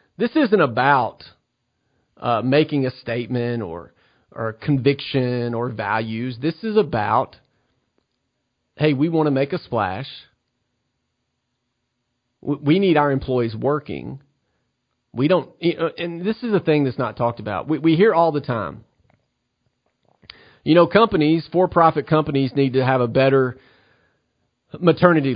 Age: 40-59